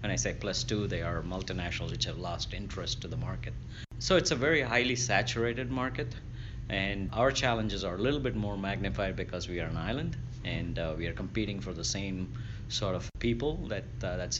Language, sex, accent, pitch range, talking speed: English, male, Indian, 95-120 Hz, 210 wpm